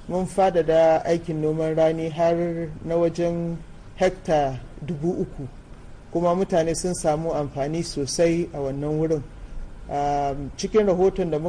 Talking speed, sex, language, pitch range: 120 wpm, male, English, 145-175 Hz